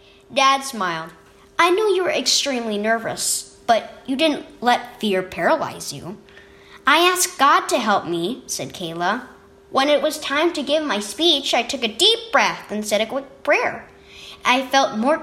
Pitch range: 200-310 Hz